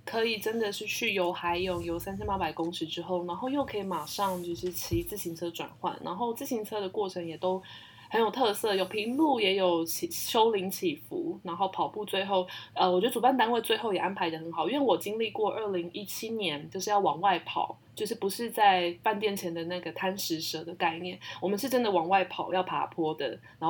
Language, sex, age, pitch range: Chinese, female, 20-39, 175-230 Hz